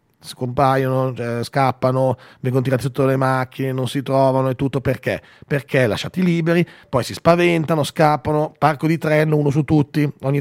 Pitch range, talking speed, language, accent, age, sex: 130-165 Hz, 155 wpm, Italian, native, 40-59, male